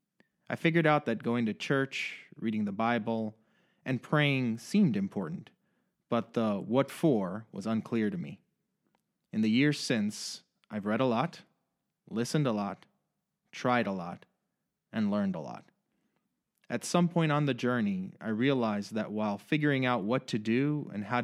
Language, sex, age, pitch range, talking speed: English, male, 30-49, 110-180 Hz, 160 wpm